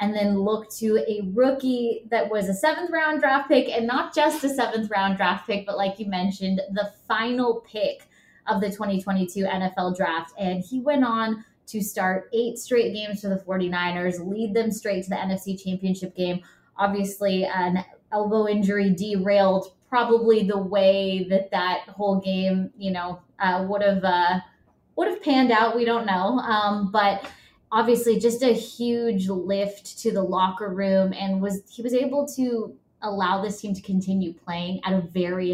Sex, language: female, English